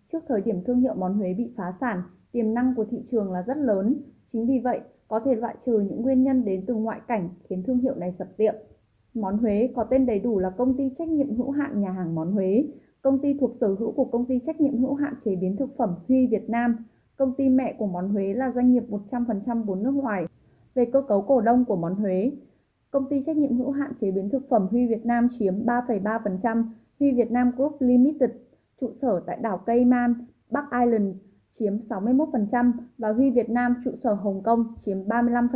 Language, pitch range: Vietnamese, 210-255 Hz